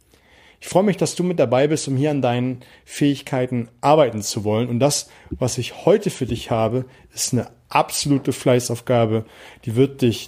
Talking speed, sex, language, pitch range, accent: 180 wpm, male, German, 120-145 Hz, German